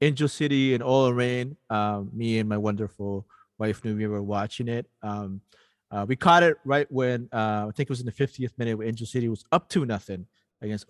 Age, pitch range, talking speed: 30-49, 110-135 Hz, 215 wpm